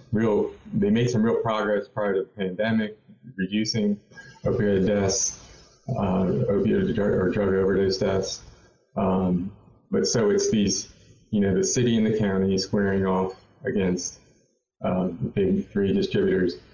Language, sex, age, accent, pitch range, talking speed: English, male, 30-49, American, 95-115 Hz, 140 wpm